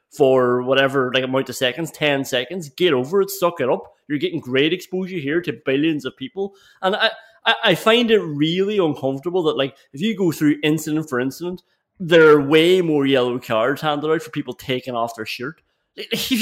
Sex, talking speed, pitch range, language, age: male, 195 wpm, 145-215 Hz, English, 30-49